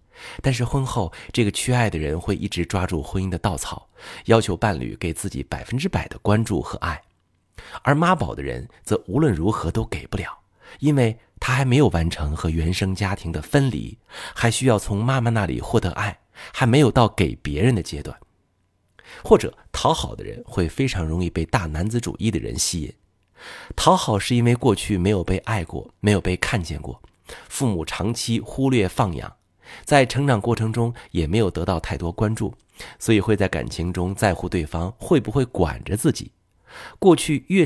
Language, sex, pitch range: Chinese, male, 85-120 Hz